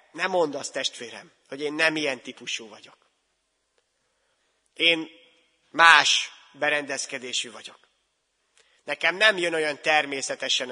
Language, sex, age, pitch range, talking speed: Hungarian, male, 30-49, 145-175 Hz, 105 wpm